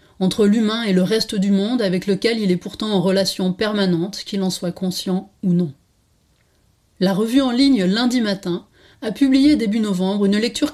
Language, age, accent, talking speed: French, 30-49, French, 185 wpm